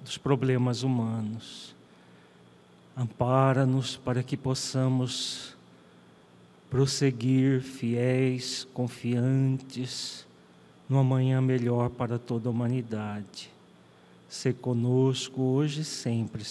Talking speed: 80 wpm